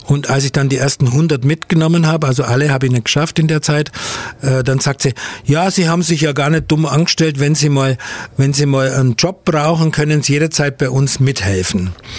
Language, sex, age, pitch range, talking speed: German, male, 60-79, 130-160 Hz, 220 wpm